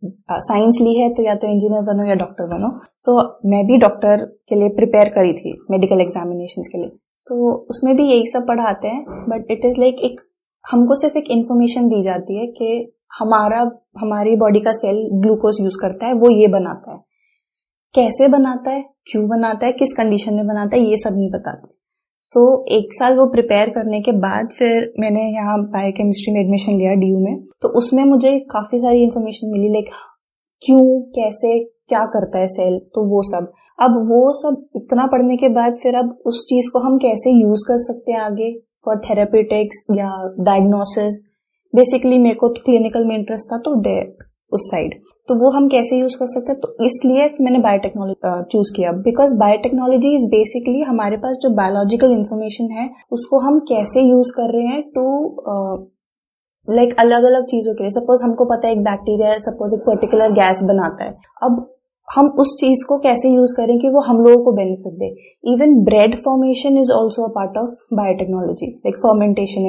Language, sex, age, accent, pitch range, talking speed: Hindi, female, 20-39, native, 210-250 Hz, 190 wpm